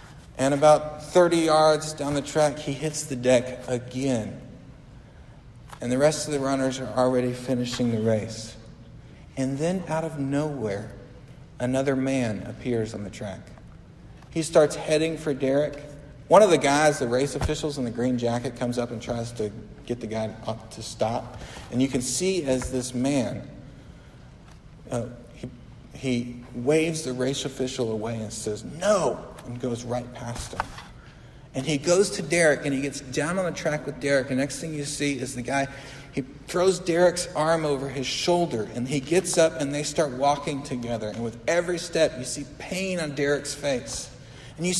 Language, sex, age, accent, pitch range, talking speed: English, male, 50-69, American, 125-160 Hz, 180 wpm